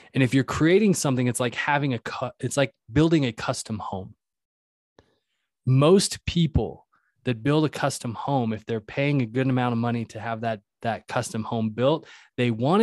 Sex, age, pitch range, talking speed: male, 20-39, 115-145 Hz, 180 wpm